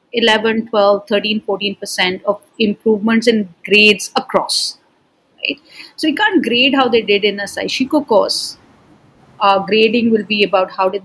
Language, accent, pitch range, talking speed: English, Indian, 205-275 Hz, 155 wpm